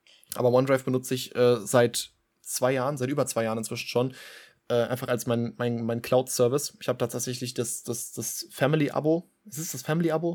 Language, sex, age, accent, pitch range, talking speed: German, male, 20-39, German, 125-140 Hz, 175 wpm